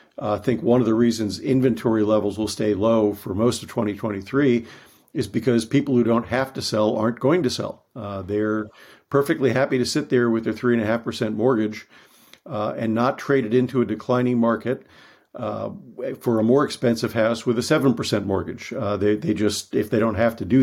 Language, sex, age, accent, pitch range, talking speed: English, male, 50-69, American, 110-125 Hz, 210 wpm